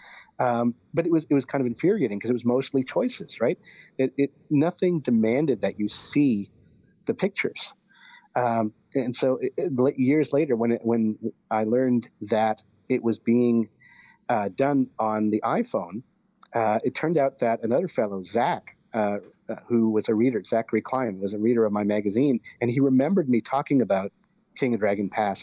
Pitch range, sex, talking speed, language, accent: 110-135 Hz, male, 180 wpm, English, American